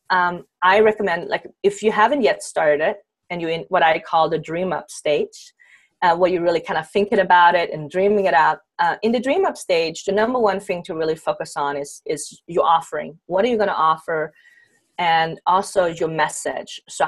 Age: 30-49